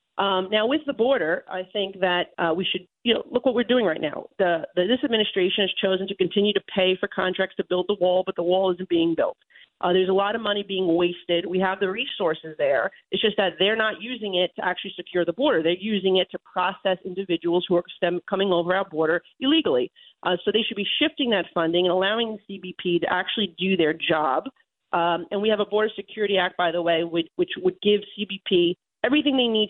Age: 40-59